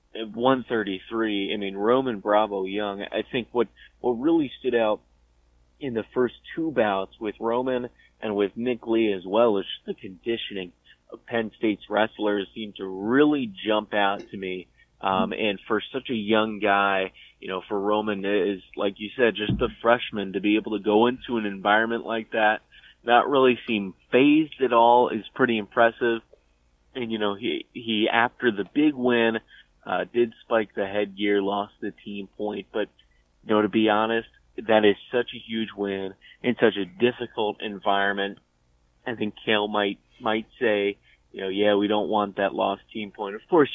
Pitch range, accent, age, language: 100-120 Hz, American, 30-49, English